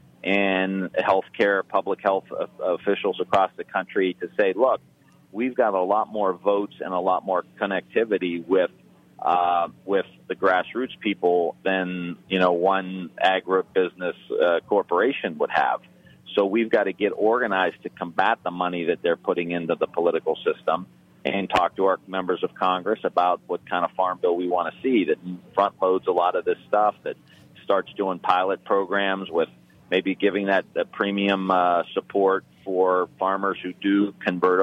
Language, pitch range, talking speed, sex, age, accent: English, 90-100 Hz, 170 wpm, male, 40-59, American